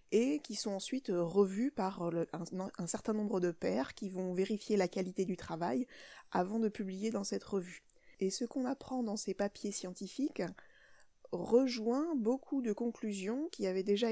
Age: 20-39